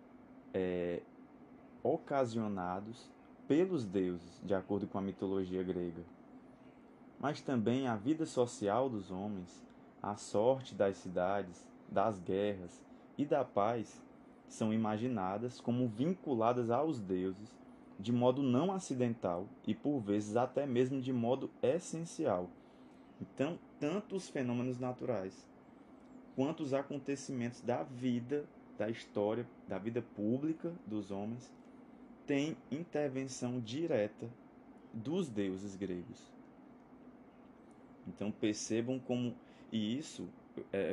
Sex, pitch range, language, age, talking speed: male, 100-145 Hz, Portuguese, 20-39, 105 wpm